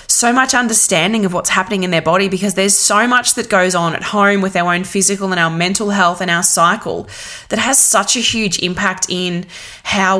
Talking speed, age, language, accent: 220 wpm, 20-39, English, Australian